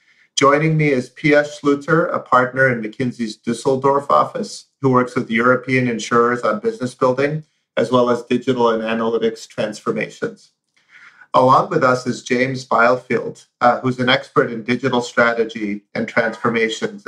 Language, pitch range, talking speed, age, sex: English, 115-140 Hz, 145 wpm, 40-59, male